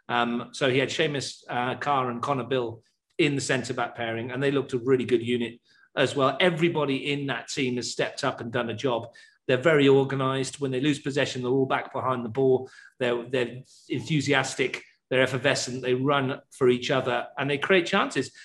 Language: English